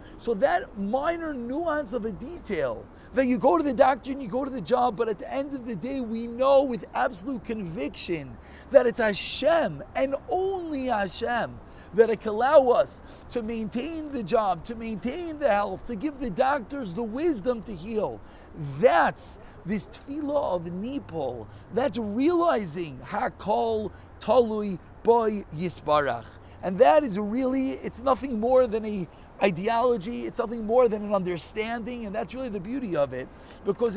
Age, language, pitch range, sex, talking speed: 40-59, English, 185-250 Hz, male, 165 wpm